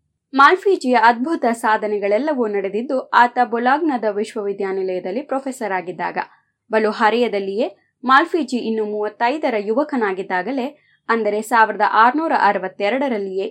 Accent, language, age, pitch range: native, Kannada, 20-39, 205-275 Hz